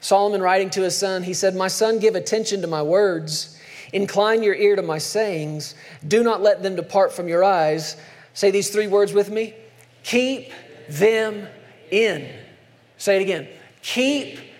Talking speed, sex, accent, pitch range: 170 wpm, male, American, 180-225 Hz